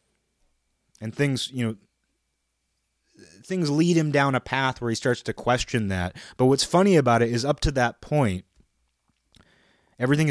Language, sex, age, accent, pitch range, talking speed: English, male, 30-49, American, 95-130 Hz, 155 wpm